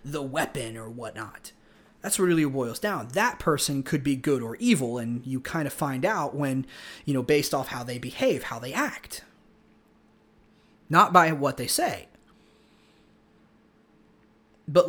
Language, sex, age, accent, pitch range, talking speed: English, male, 30-49, American, 145-215 Hz, 155 wpm